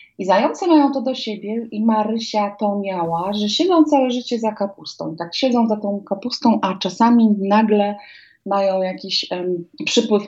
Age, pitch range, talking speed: 30-49, 180-225 Hz, 170 wpm